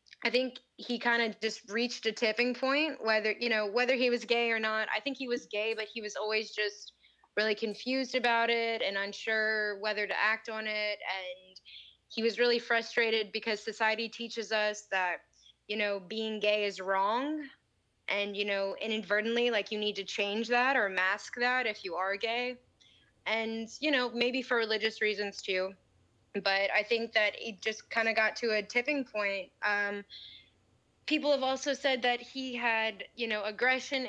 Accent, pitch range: American, 205-245 Hz